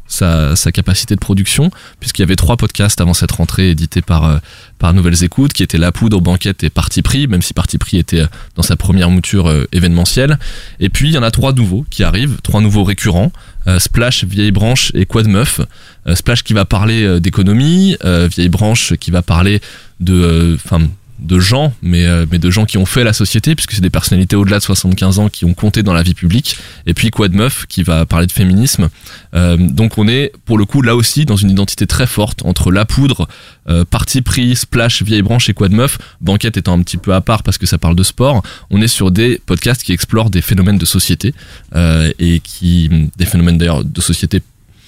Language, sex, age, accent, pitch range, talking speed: French, male, 20-39, French, 90-115 Hz, 220 wpm